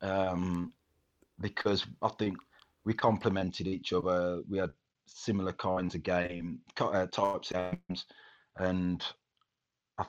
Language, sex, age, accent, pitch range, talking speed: English, male, 30-49, British, 90-120 Hz, 115 wpm